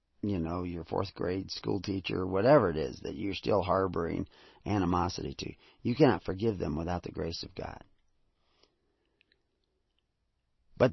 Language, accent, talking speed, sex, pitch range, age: English, American, 145 wpm, male, 90-140 Hz, 40-59